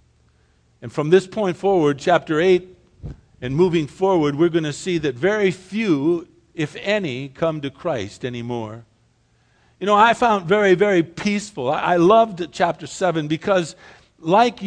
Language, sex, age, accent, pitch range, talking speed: English, male, 50-69, American, 145-210 Hz, 145 wpm